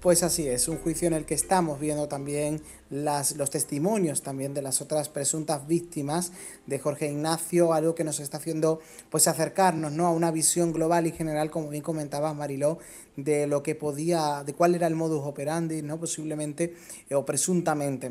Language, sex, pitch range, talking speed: Spanish, male, 150-185 Hz, 180 wpm